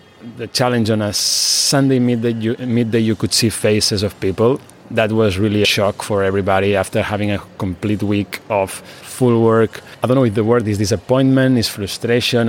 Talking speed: 185 wpm